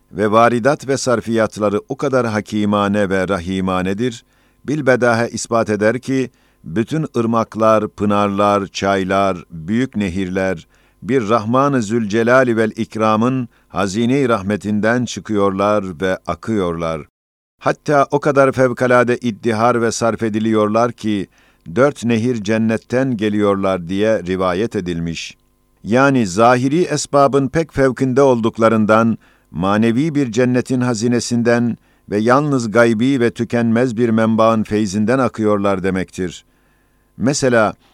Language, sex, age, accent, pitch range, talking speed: Turkish, male, 50-69, native, 105-125 Hz, 105 wpm